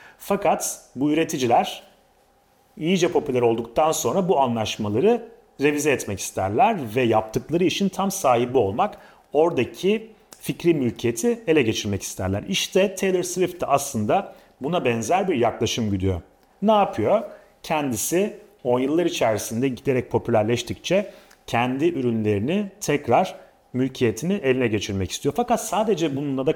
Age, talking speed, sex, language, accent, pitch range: 40-59, 120 wpm, male, Turkish, native, 115-185 Hz